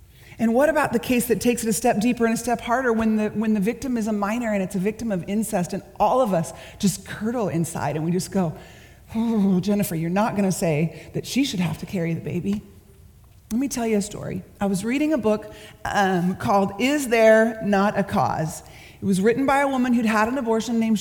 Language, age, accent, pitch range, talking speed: English, 30-49, American, 190-250 Hz, 235 wpm